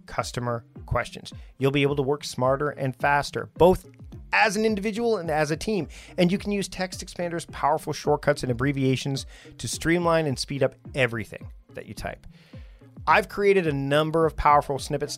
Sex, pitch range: male, 130-175 Hz